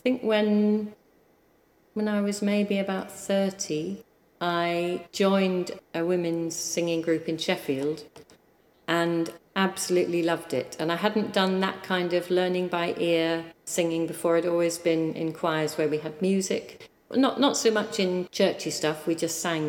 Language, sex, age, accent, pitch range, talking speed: English, female, 40-59, British, 155-185 Hz, 160 wpm